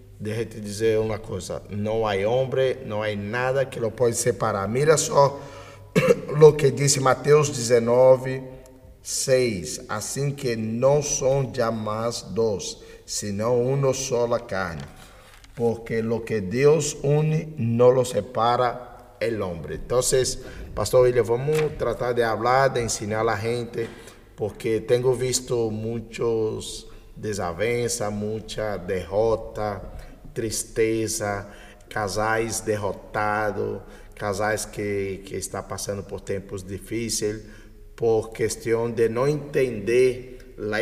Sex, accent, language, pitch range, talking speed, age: male, Brazilian, Spanish, 110-125 Hz, 115 wpm, 50-69